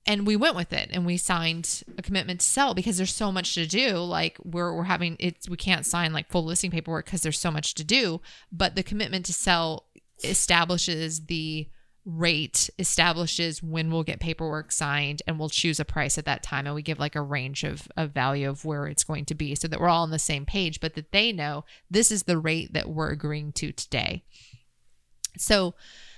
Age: 20-39